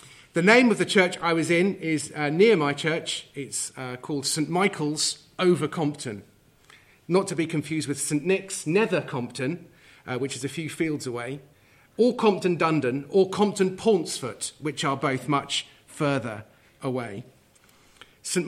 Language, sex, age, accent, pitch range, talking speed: English, male, 40-59, British, 130-165 Hz, 155 wpm